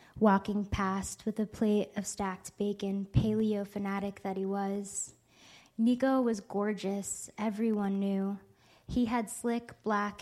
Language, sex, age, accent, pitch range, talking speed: English, female, 20-39, American, 195-220 Hz, 125 wpm